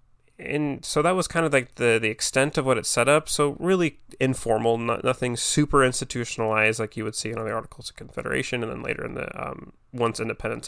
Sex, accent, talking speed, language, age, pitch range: male, American, 215 wpm, English, 20-39, 110-125 Hz